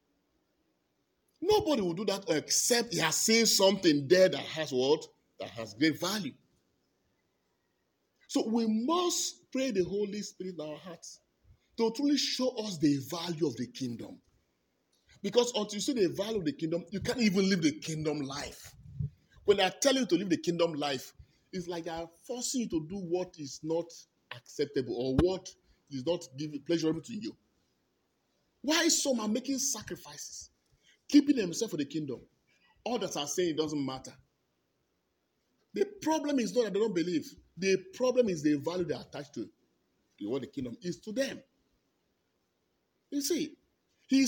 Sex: male